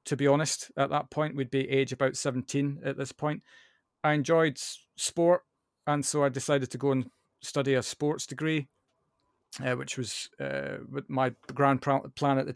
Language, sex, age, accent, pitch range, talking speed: English, male, 40-59, British, 130-150 Hz, 175 wpm